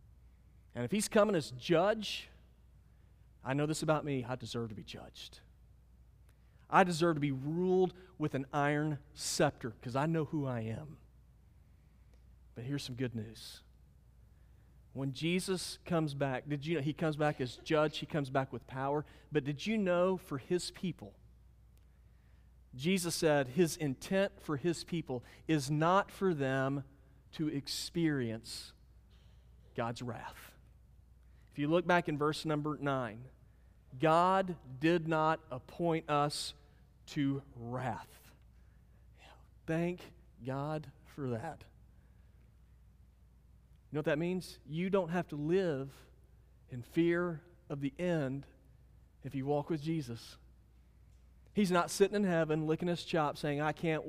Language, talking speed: English, 140 wpm